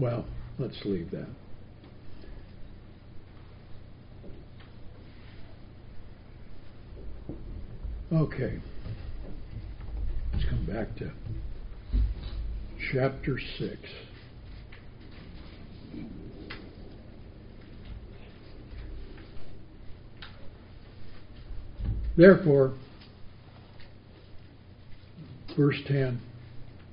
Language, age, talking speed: English, 60-79, 30 wpm